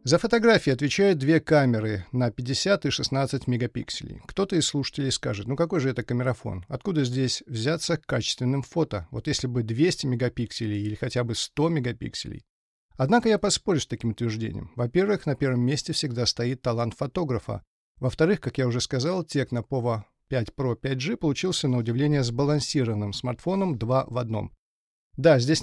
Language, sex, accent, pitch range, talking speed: Russian, male, native, 115-155 Hz, 160 wpm